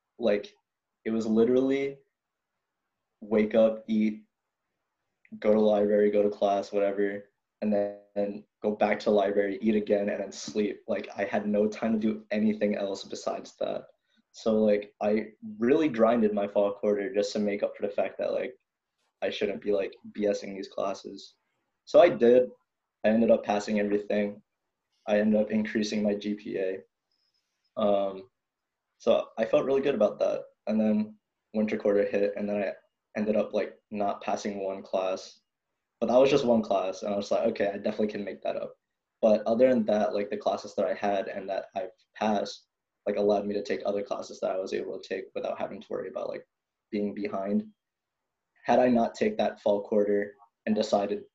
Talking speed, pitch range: 190 wpm, 100-110 Hz